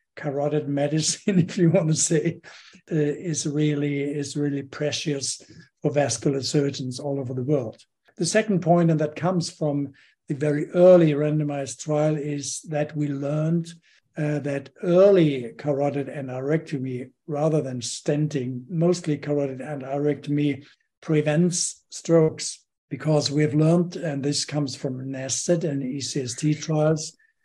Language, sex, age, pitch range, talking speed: English, male, 60-79, 140-160 Hz, 130 wpm